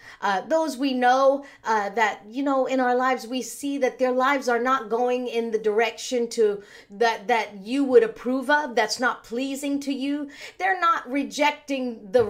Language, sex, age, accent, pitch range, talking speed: English, female, 40-59, American, 215-275 Hz, 185 wpm